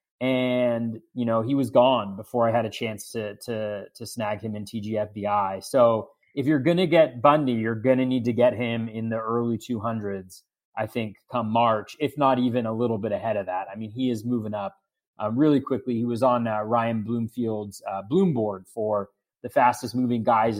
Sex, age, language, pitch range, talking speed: male, 30-49, English, 115-150 Hz, 210 wpm